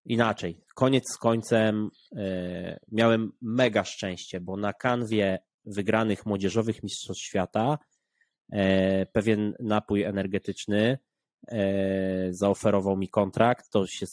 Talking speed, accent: 95 wpm, native